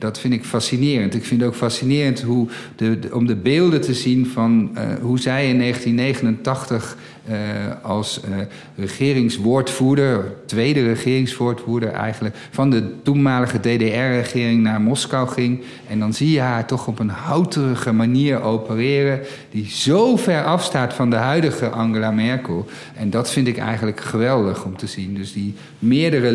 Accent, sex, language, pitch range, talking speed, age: Dutch, male, Dutch, 115-140 Hz, 155 wpm, 50-69